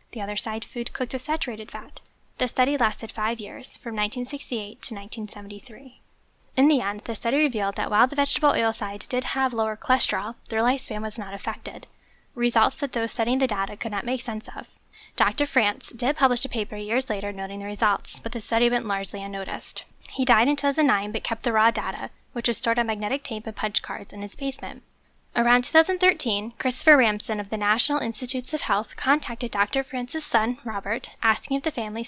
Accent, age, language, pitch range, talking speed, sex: American, 10-29, English, 210-260 Hz, 200 wpm, female